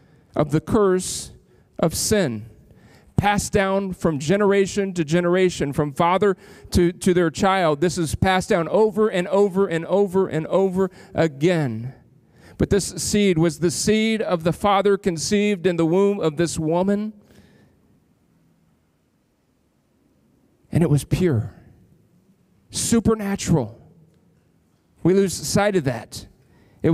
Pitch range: 155-195 Hz